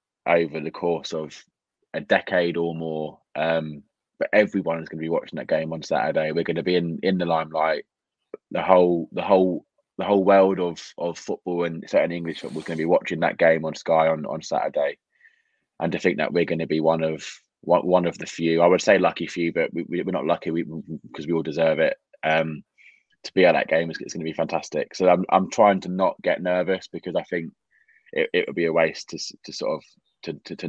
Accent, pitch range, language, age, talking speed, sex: British, 80-90 Hz, English, 20-39, 240 wpm, male